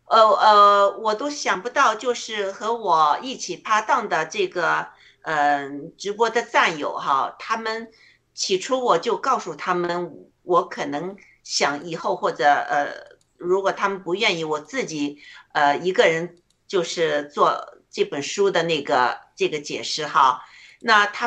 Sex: female